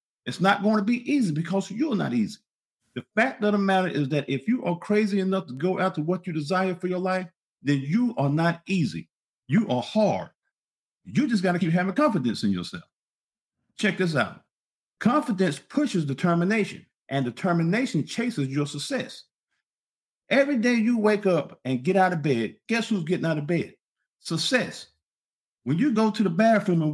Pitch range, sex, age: 175-235 Hz, male, 50-69